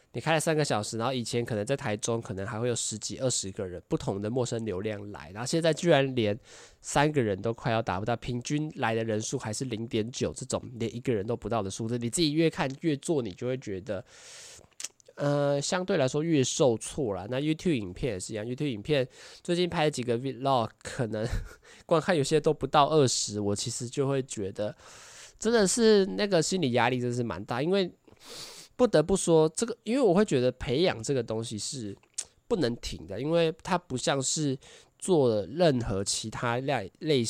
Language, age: Chinese, 20-39